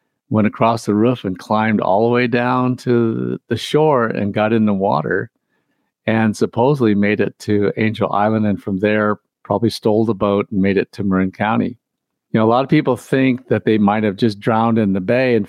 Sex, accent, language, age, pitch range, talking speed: male, American, English, 50-69, 105-125 Hz, 215 wpm